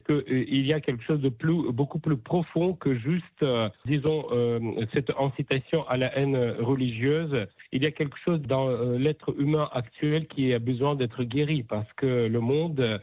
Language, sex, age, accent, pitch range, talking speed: French, male, 60-79, French, 120-150 Hz, 170 wpm